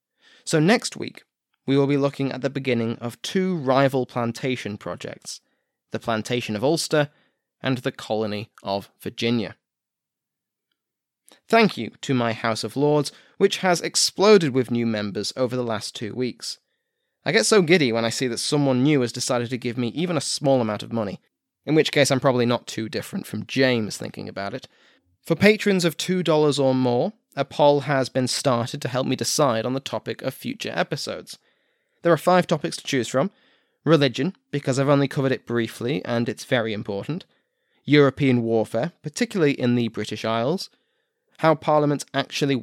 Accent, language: British, English